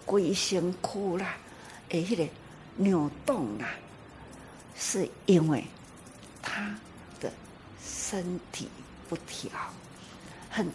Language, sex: Chinese, female